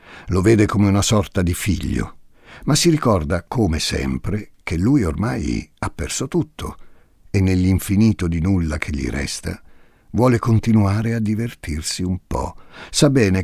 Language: Italian